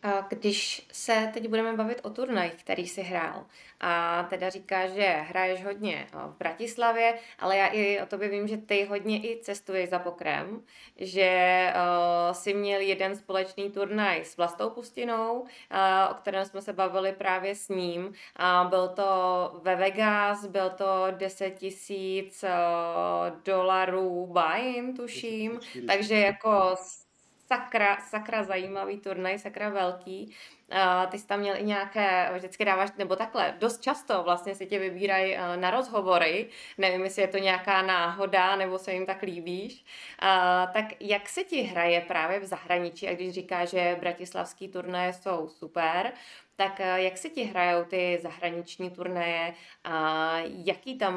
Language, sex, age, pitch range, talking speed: Czech, female, 20-39, 180-205 Hz, 150 wpm